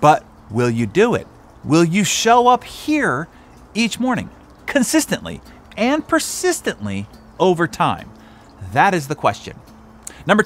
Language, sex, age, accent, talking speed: English, male, 30-49, American, 125 wpm